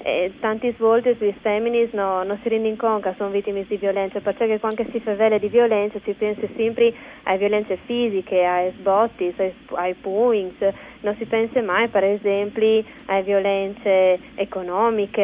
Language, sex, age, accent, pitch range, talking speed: Italian, female, 20-39, native, 195-225 Hz, 160 wpm